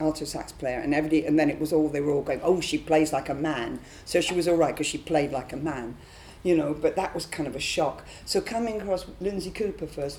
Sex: female